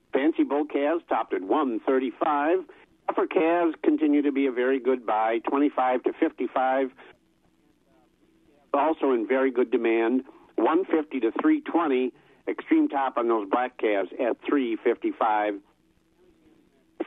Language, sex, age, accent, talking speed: English, male, 50-69, American, 120 wpm